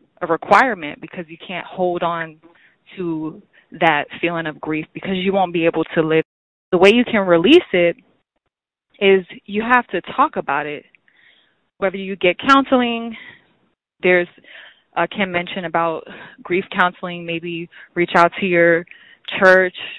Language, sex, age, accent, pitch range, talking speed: English, female, 20-39, American, 165-200 Hz, 150 wpm